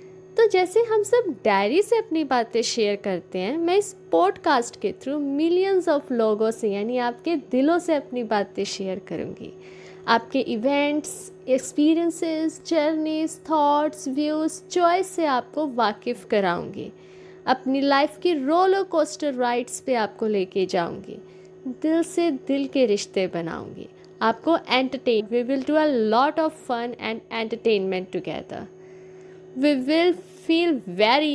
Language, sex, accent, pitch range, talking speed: Hindi, female, native, 220-340 Hz, 135 wpm